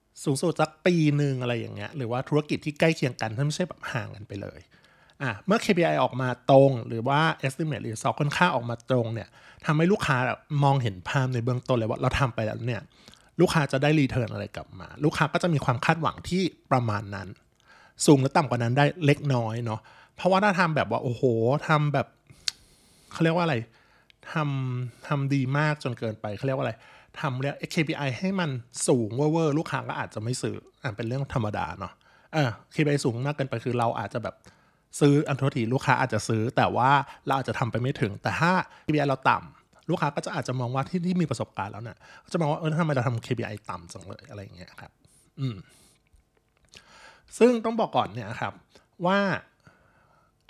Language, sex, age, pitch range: Thai, male, 20-39, 120-155 Hz